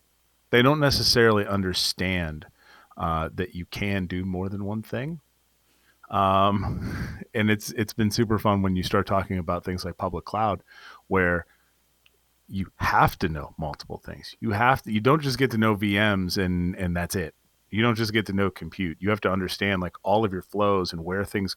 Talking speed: 190 wpm